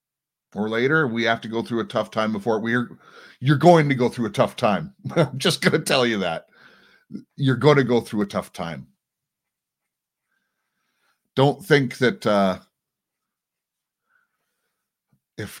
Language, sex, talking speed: English, male, 160 wpm